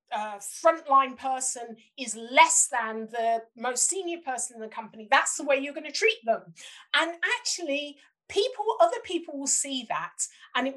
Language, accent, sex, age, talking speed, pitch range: English, British, female, 40-59, 175 wpm, 235-335 Hz